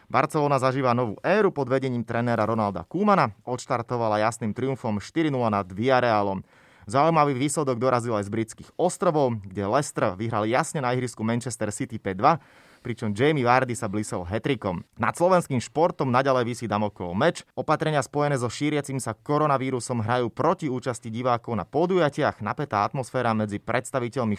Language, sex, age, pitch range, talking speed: Slovak, male, 20-39, 110-140 Hz, 150 wpm